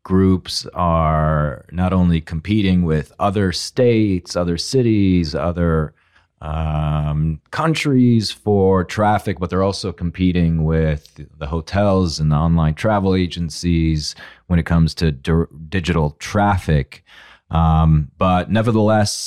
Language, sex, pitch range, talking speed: English, male, 80-95 Hz, 110 wpm